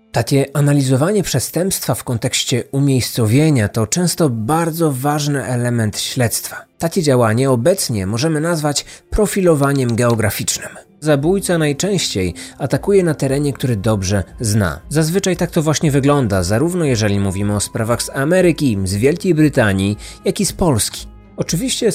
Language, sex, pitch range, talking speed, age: Polish, male, 110-160 Hz, 130 wpm, 30-49